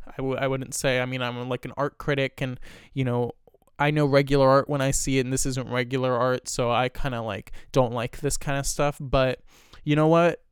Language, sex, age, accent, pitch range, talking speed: English, male, 20-39, American, 135-175 Hz, 240 wpm